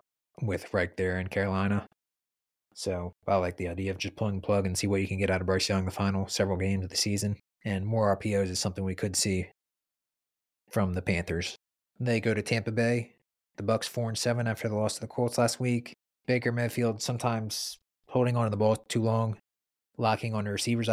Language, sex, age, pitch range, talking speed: English, male, 20-39, 95-115 Hz, 220 wpm